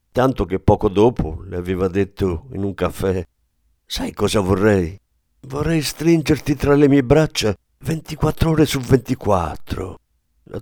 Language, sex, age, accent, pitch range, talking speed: Italian, male, 50-69, native, 85-120 Hz, 135 wpm